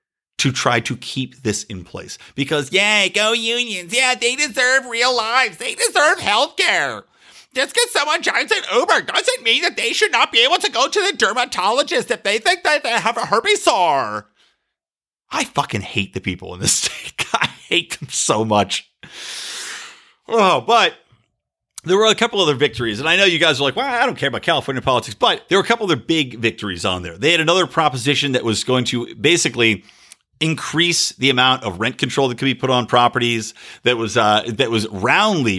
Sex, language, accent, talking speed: male, English, American, 200 wpm